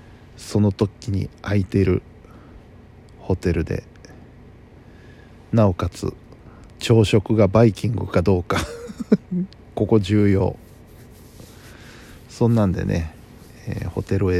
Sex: male